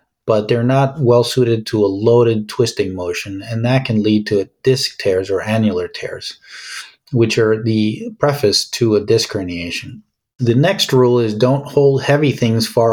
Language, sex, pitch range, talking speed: English, male, 105-130 Hz, 175 wpm